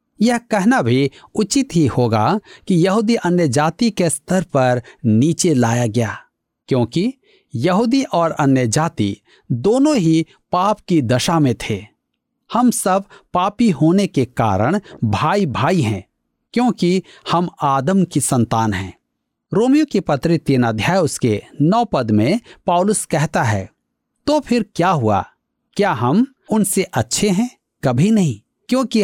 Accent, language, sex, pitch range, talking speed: native, Hindi, male, 130-210 Hz, 135 wpm